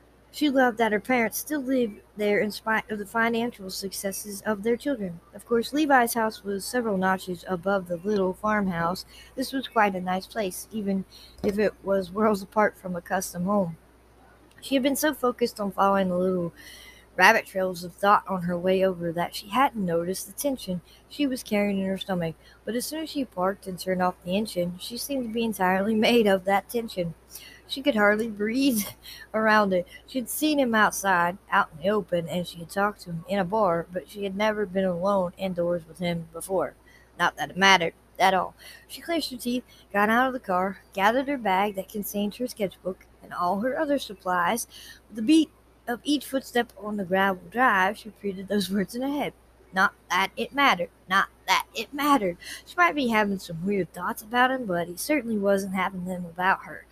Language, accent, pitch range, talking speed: English, American, 185-235 Hz, 205 wpm